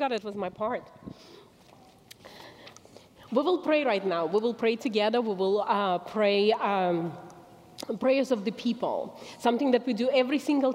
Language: English